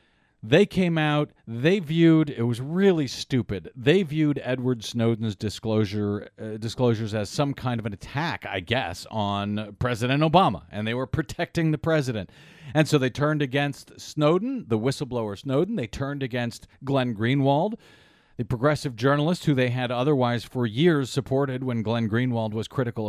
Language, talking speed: English, 160 wpm